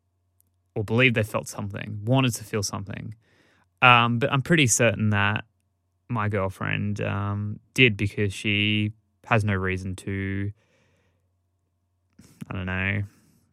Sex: male